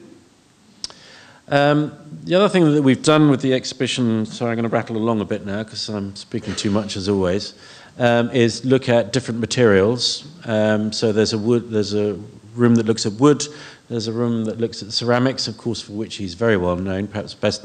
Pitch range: 95-115 Hz